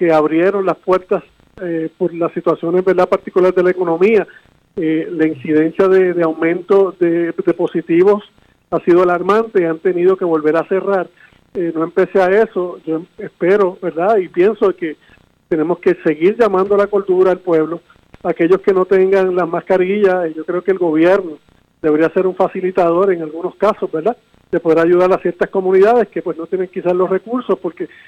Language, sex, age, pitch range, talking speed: Spanish, male, 40-59, 170-195 Hz, 180 wpm